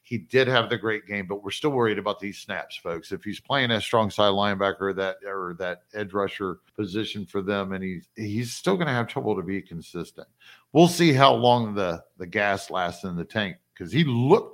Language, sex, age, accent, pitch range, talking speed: English, male, 50-69, American, 100-125 Hz, 225 wpm